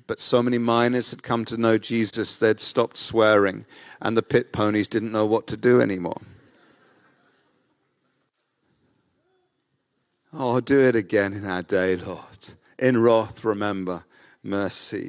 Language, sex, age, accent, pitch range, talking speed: English, male, 50-69, British, 110-140 Hz, 135 wpm